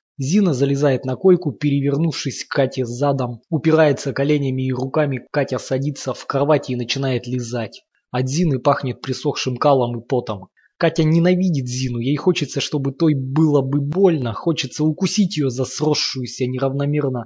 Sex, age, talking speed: male, 20-39, 145 wpm